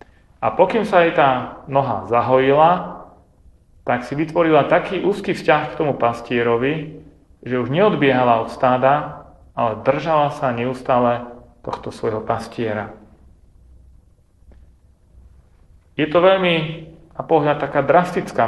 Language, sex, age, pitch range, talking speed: Slovak, male, 40-59, 100-145 Hz, 115 wpm